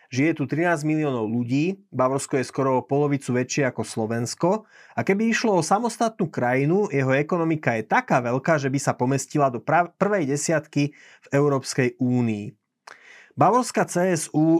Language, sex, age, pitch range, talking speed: Slovak, male, 30-49, 125-155 Hz, 150 wpm